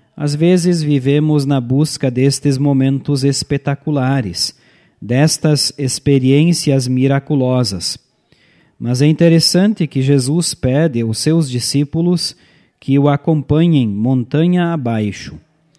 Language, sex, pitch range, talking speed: Portuguese, male, 130-160 Hz, 95 wpm